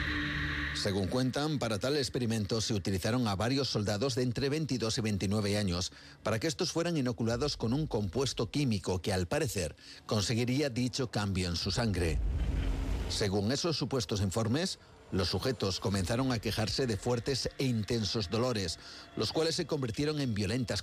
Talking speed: 155 wpm